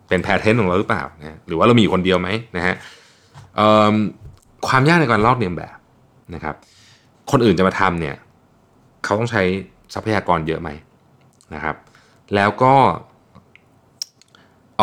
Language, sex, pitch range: Thai, male, 90-120 Hz